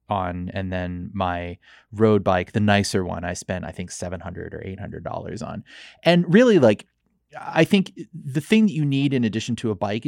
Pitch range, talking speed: 110-145 Hz, 190 wpm